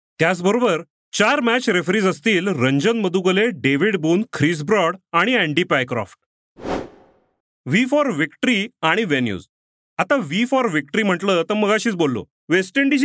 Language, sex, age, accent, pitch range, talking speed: Marathi, male, 40-59, native, 165-235 Hz, 110 wpm